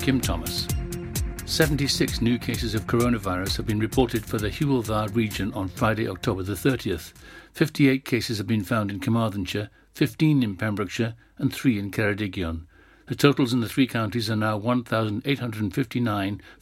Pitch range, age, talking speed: 100-125 Hz, 60-79, 150 wpm